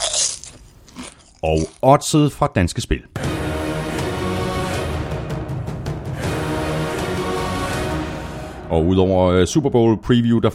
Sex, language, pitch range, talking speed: male, Danish, 85-125 Hz, 65 wpm